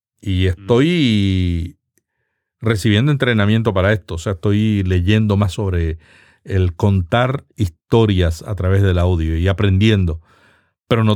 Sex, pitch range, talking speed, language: male, 95-120 Hz, 125 wpm, Spanish